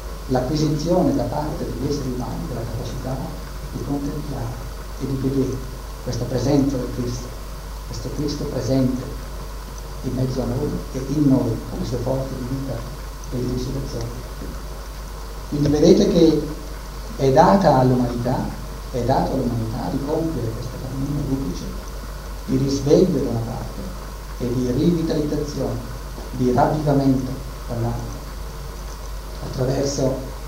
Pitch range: 125-145 Hz